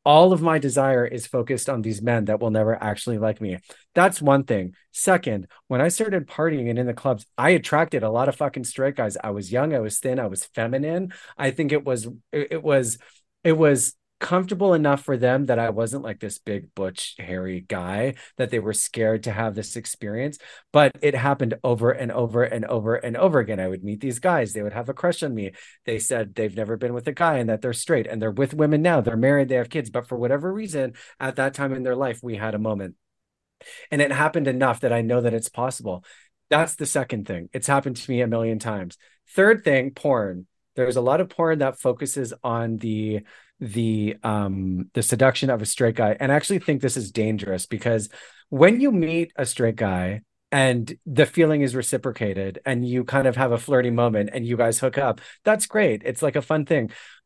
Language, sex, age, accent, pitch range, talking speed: English, male, 30-49, American, 110-140 Hz, 225 wpm